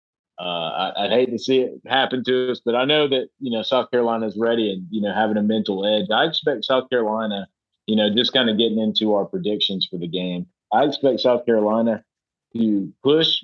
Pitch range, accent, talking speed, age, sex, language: 100-120 Hz, American, 220 wpm, 30-49, male, English